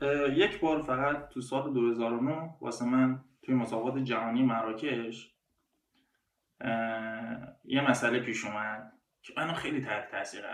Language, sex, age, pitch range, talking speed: Persian, male, 20-39, 120-160 Hz, 130 wpm